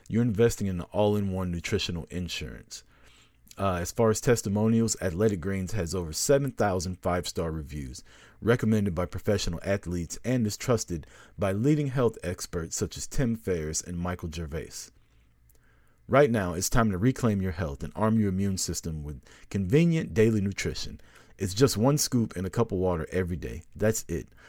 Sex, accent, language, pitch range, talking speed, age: male, American, English, 85-115 Hz, 165 wpm, 40-59